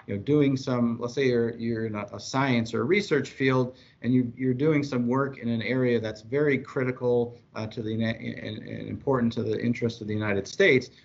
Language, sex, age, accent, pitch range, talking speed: Italian, male, 40-59, American, 110-130 Hz, 205 wpm